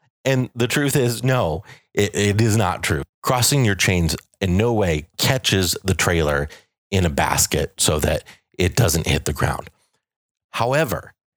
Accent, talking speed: American, 160 wpm